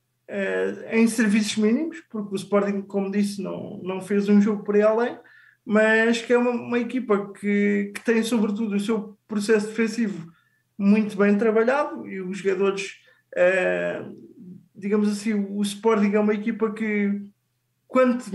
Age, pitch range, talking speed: 20-39, 200-235 Hz, 155 wpm